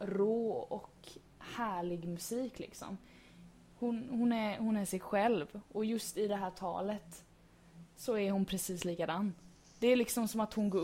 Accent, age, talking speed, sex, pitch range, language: native, 20-39, 165 wpm, female, 190-245 Hz, Swedish